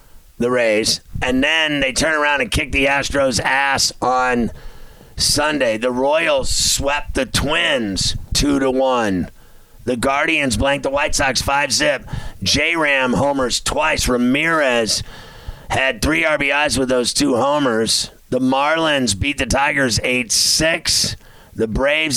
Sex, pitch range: male, 115-150 Hz